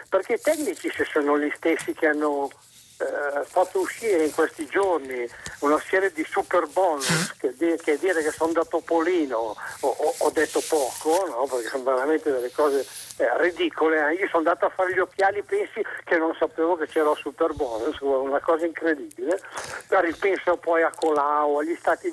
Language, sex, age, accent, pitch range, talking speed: Italian, male, 60-79, native, 155-250 Hz, 180 wpm